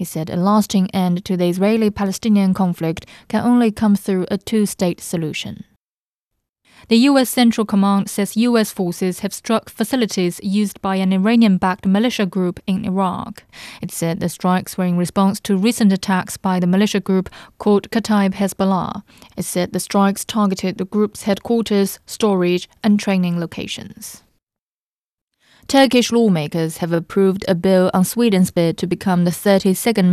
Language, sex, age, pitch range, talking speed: English, female, 20-39, 180-205 Hz, 150 wpm